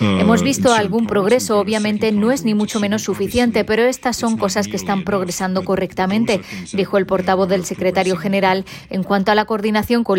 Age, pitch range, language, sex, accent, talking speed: 20-39, 190-215 Hz, Spanish, female, Spanish, 185 wpm